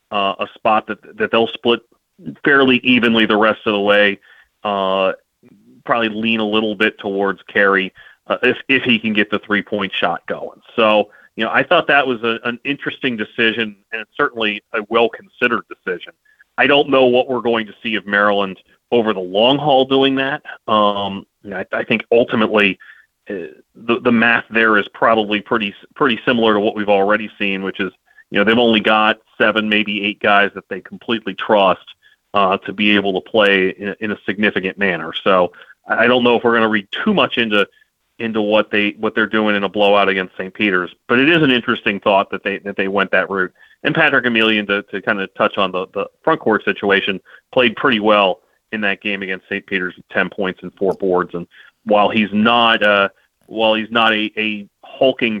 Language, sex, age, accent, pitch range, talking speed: English, male, 30-49, American, 100-115 Hz, 210 wpm